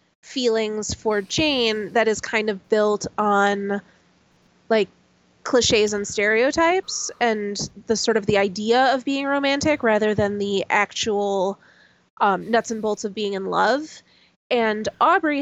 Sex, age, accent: female, 20-39, American